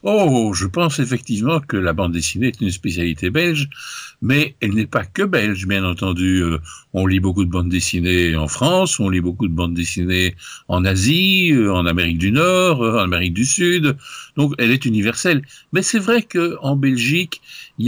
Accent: French